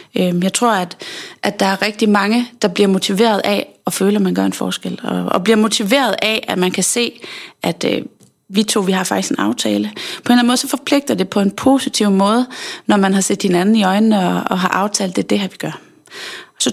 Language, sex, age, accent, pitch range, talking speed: Danish, female, 30-49, native, 185-245 Hz, 230 wpm